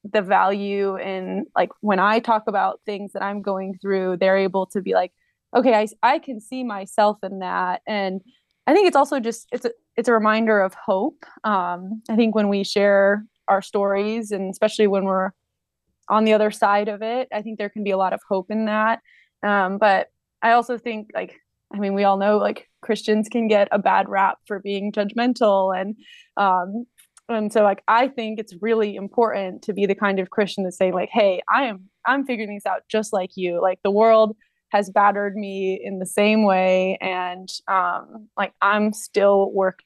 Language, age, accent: English, 20-39, American